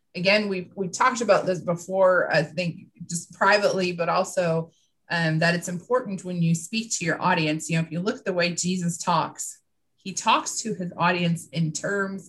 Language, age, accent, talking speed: English, 30-49, American, 195 wpm